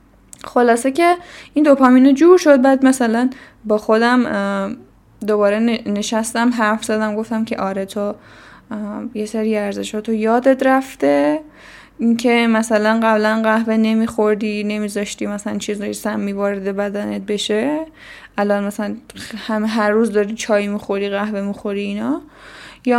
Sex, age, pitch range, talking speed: female, 10-29, 205-240 Hz, 130 wpm